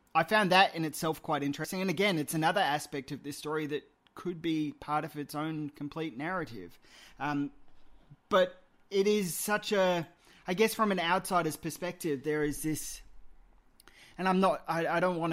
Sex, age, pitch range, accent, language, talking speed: male, 20-39, 135-160 Hz, Australian, English, 180 wpm